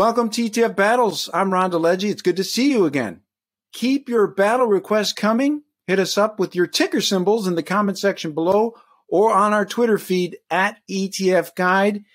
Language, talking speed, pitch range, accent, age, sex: English, 190 wpm, 170-225 Hz, American, 50-69, male